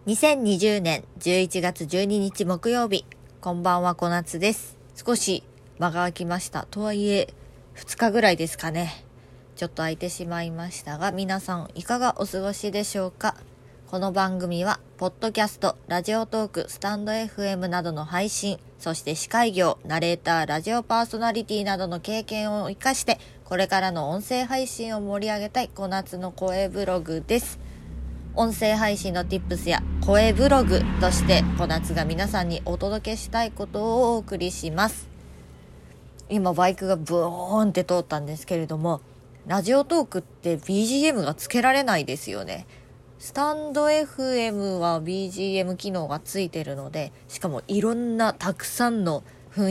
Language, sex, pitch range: Japanese, female, 165-210 Hz